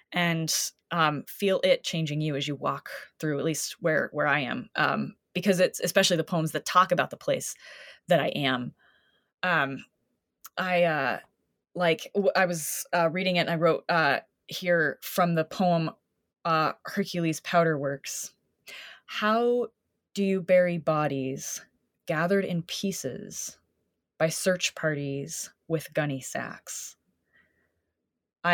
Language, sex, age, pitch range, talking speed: English, female, 20-39, 155-185 Hz, 140 wpm